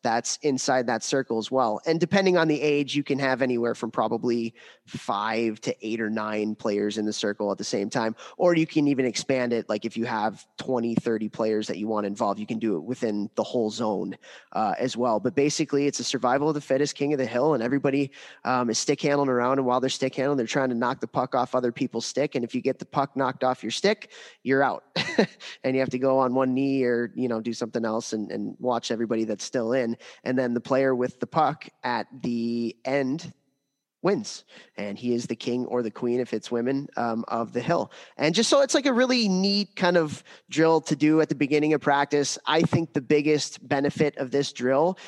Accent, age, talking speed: American, 20-39, 235 wpm